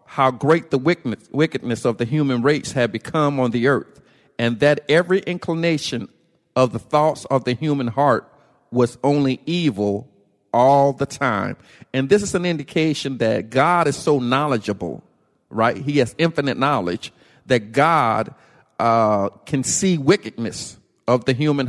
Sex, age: male, 50-69